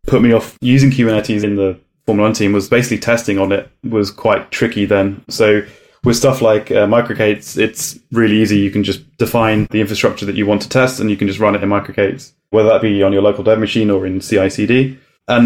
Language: English